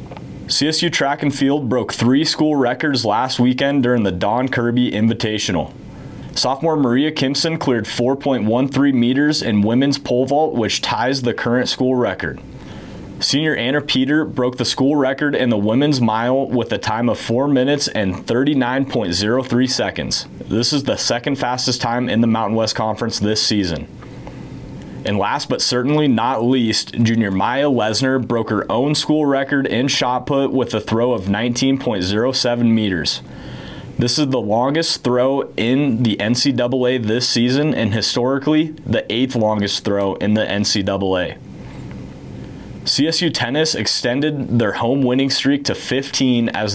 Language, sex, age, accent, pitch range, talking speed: English, male, 30-49, American, 110-135 Hz, 150 wpm